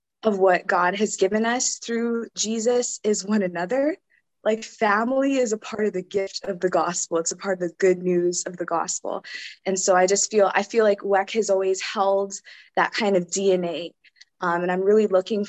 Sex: female